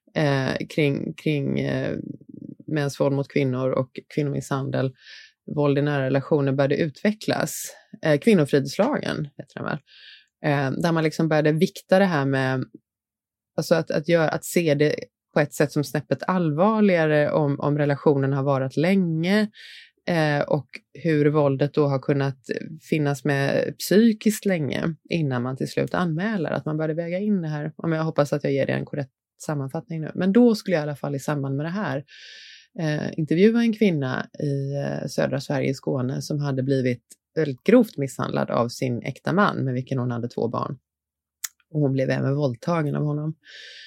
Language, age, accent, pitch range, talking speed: Swedish, 20-39, native, 140-175 Hz, 170 wpm